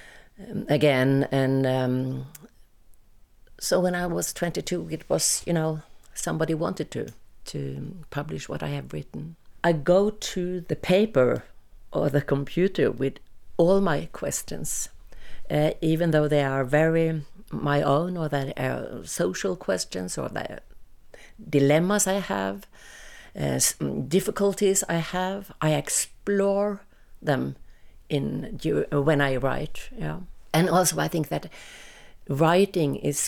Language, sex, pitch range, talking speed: English, female, 145-185 Hz, 130 wpm